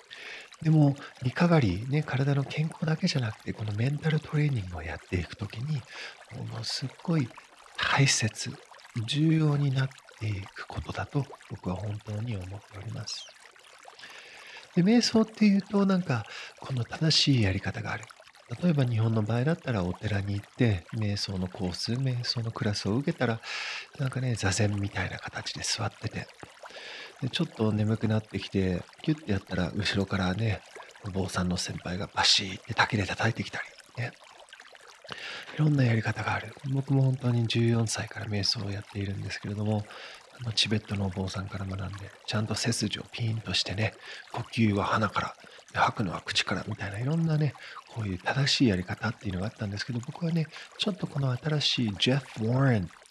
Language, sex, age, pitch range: English, male, 50-69, 100-140 Hz